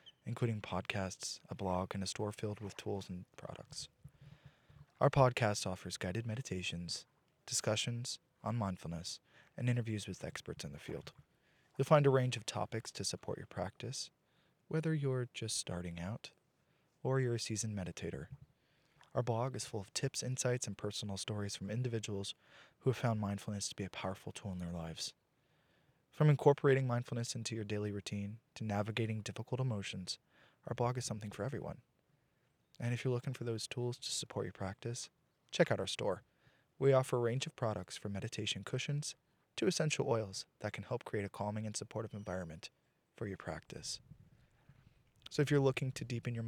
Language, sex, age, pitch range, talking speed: English, male, 20-39, 105-135 Hz, 175 wpm